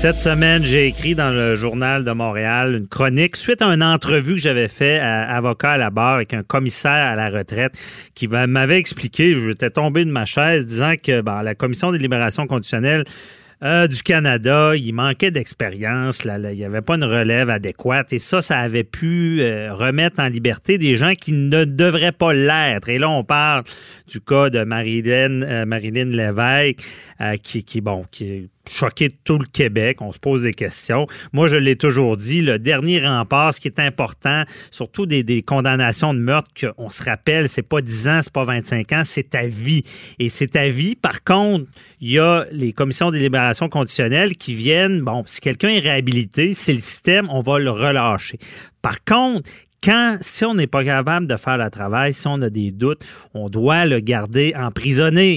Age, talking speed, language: 40-59, 200 wpm, French